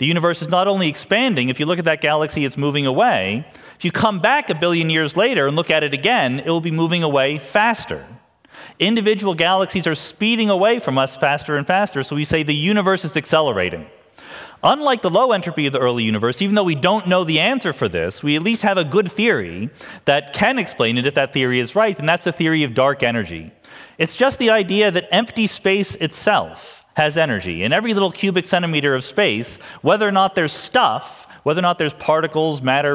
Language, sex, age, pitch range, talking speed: English, male, 40-59, 145-200 Hz, 215 wpm